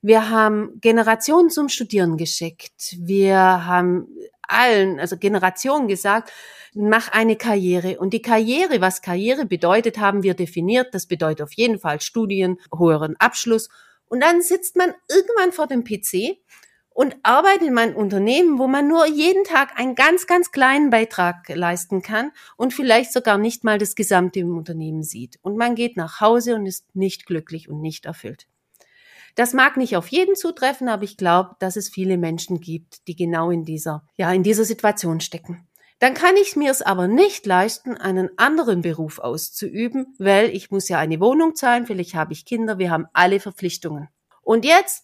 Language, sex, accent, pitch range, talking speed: German, female, German, 175-250 Hz, 175 wpm